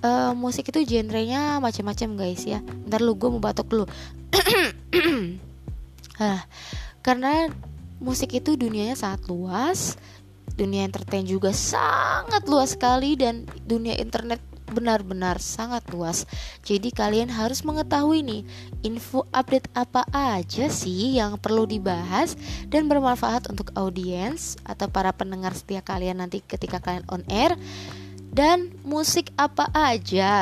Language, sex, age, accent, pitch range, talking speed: Indonesian, female, 20-39, native, 190-250 Hz, 120 wpm